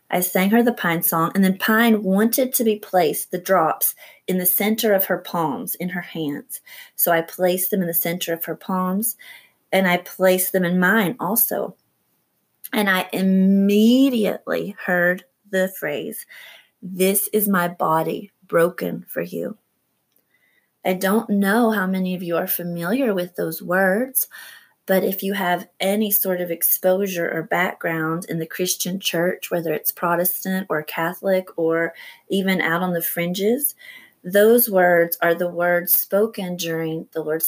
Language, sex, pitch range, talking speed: English, female, 175-205 Hz, 160 wpm